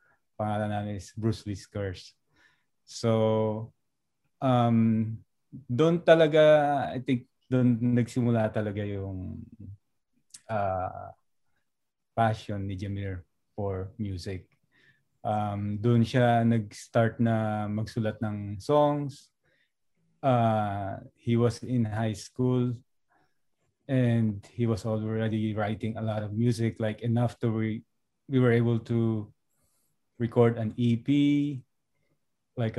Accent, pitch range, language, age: native, 110-120 Hz, Filipino, 20-39